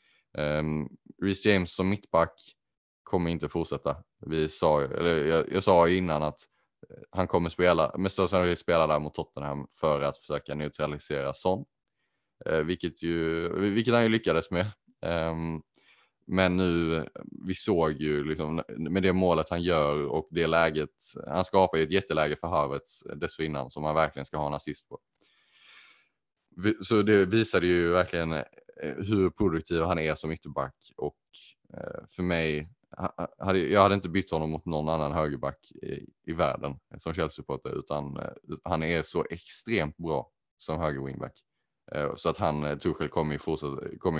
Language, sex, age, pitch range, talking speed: Swedish, male, 20-39, 75-90 Hz, 150 wpm